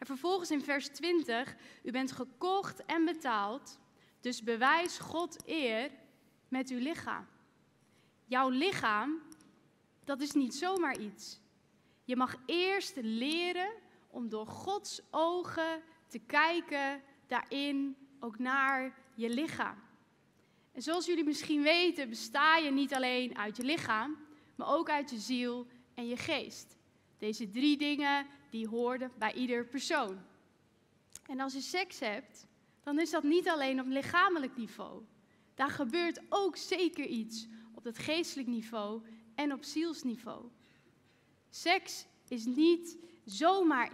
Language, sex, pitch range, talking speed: Dutch, female, 245-320 Hz, 130 wpm